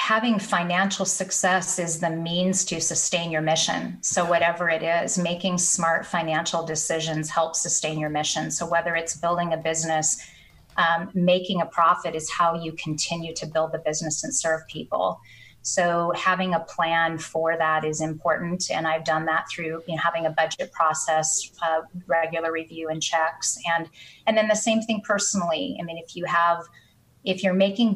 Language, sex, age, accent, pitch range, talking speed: English, female, 30-49, American, 160-180 Hz, 170 wpm